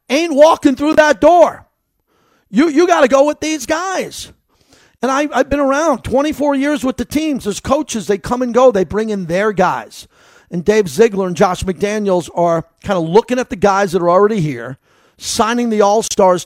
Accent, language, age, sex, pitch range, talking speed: American, English, 50-69, male, 185-260 Hz, 195 wpm